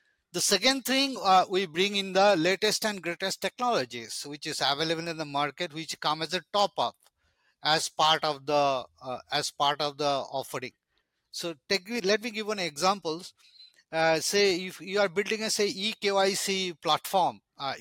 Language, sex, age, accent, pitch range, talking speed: English, male, 50-69, Indian, 145-185 Hz, 170 wpm